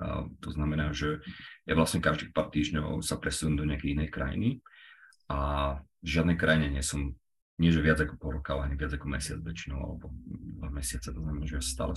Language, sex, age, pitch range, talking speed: Slovak, male, 30-49, 75-90 Hz, 195 wpm